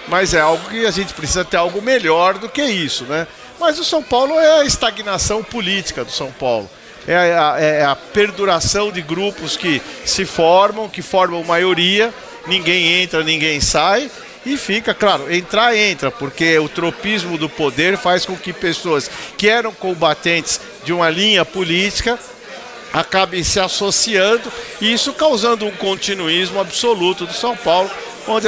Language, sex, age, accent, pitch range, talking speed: Portuguese, male, 50-69, Brazilian, 160-205 Hz, 160 wpm